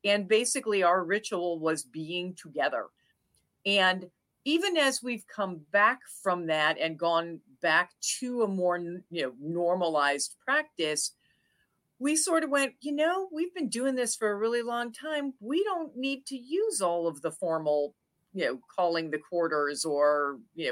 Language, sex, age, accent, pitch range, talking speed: English, female, 50-69, American, 165-240 Hz, 160 wpm